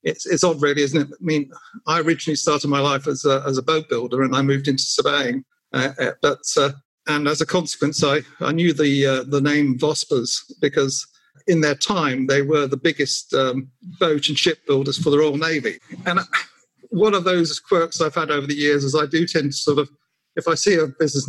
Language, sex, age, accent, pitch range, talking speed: English, male, 50-69, British, 140-165 Hz, 220 wpm